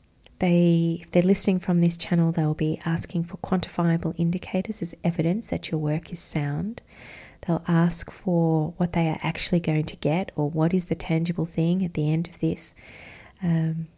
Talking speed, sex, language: 180 wpm, female, English